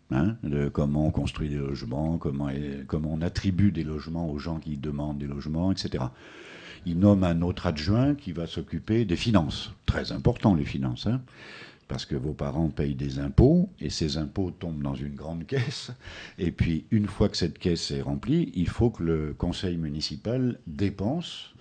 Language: French